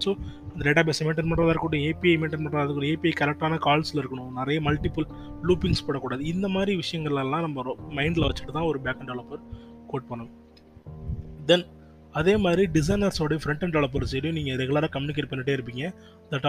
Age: 20-39